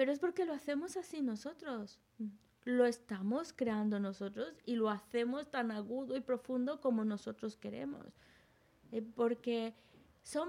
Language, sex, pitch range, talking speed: Spanish, female, 215-280 Hz, 135 wpm